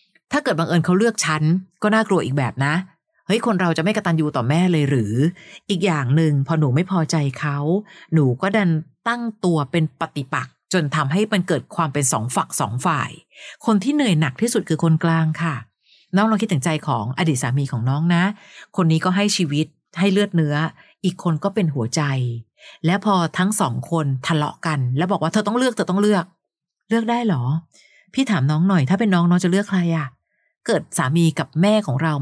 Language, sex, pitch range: Thai, female, 150-195 Hz